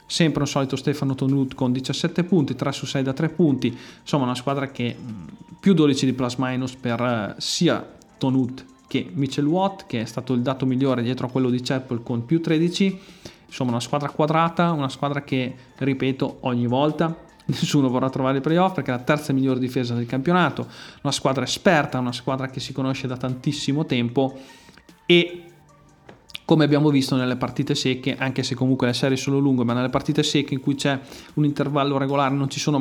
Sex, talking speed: male, 190 wpm